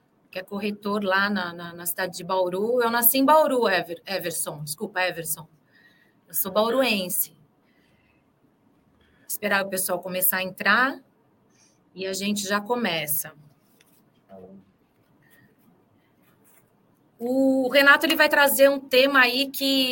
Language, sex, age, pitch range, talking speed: Portuguese, female, 30-49, 190-250 Hz, 120 wpm